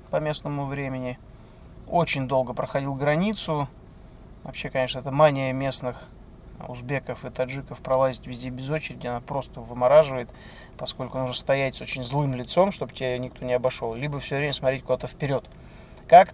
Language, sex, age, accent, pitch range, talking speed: Russian, male, 20-39, native, 125-150 Hz, 145 wpm